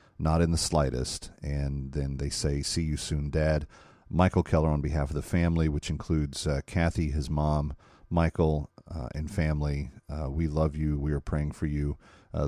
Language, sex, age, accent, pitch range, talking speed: English, male, 40-59, American, 75-95 Hz, 190 wpm